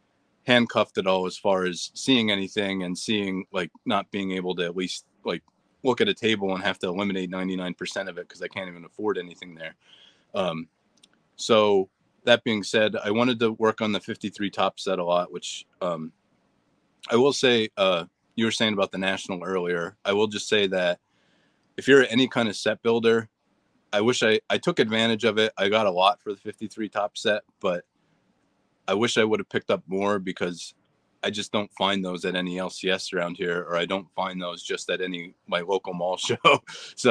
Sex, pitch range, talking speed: male, 90-110 Hz, 205 wpm